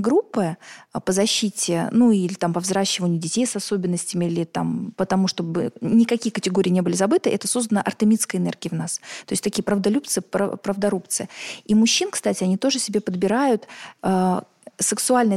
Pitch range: 190-230 Hz